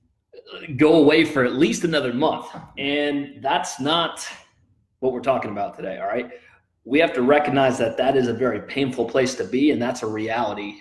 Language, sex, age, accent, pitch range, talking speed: English, male, 30-49, American, 115-140 Hz, 190 wpm